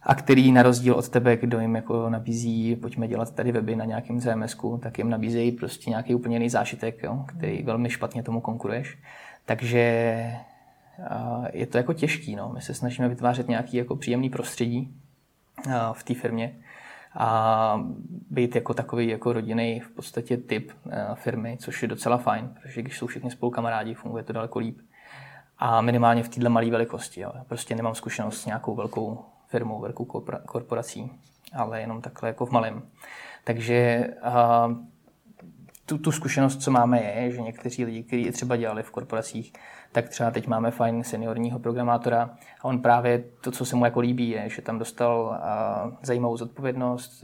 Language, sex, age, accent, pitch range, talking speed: Czech, male, 20-39, native, 115-120 Hz, 165 wpm